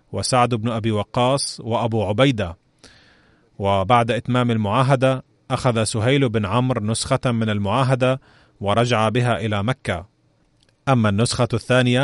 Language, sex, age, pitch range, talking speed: Arabic, male, 30-49, 110-125 Hz, 115 wpm